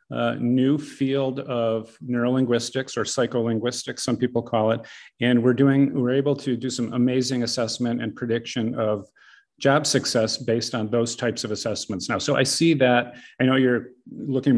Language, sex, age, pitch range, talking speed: English, male, 40-59, 115-135 Hz, 170 wpm